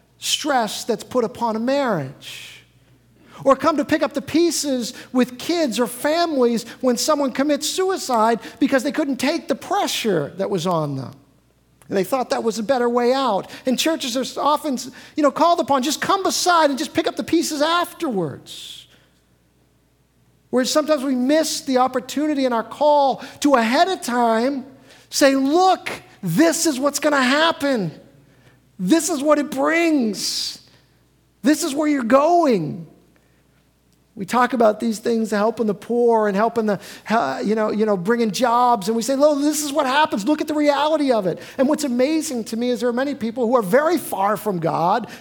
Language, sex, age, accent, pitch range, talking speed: English, male, 40-59, American, 215-295 Hz, 180 wpm